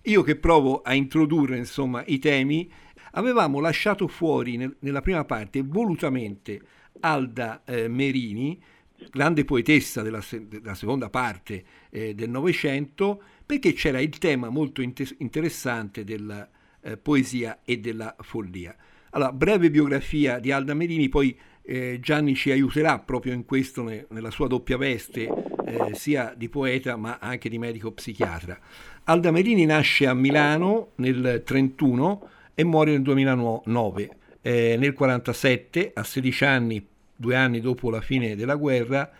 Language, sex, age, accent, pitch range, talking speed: Italian, male, 60-79, native, 120-150 Hz, 140 wpm